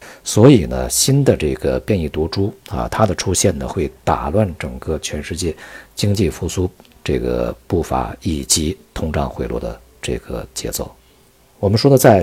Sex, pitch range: male, 75-100 Hz